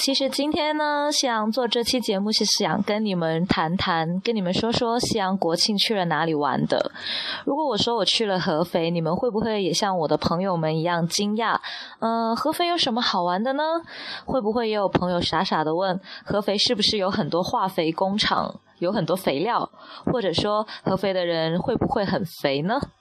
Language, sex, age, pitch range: Chinese, female, 20-39, 175-235 Hz